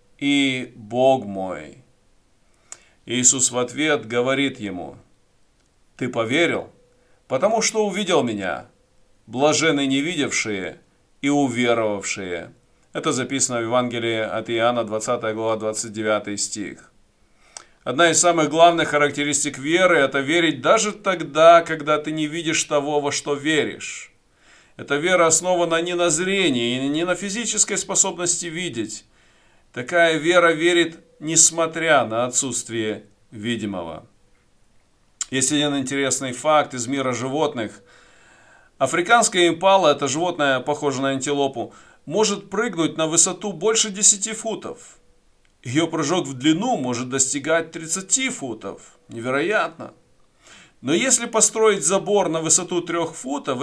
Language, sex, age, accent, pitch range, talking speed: Russian, male, 40-59, native, 125-175 Hz, 120 wpm